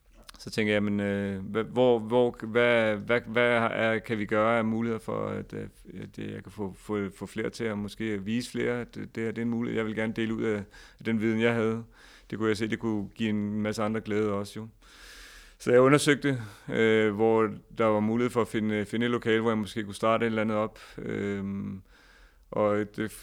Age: 30-49